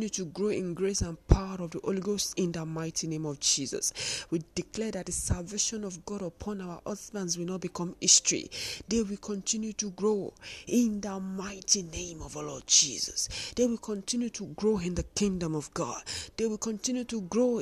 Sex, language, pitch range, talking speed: female, English, 165-210 Hz, 200 wpm